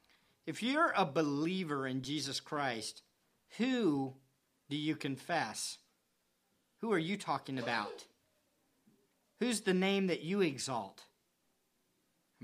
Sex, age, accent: male, 50-69, American